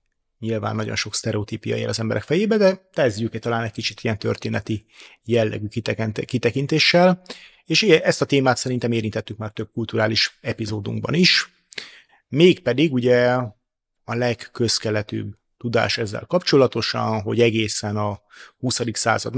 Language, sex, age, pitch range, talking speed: Hungarian, male, 30-49, 110-125 Hz, 135 wpm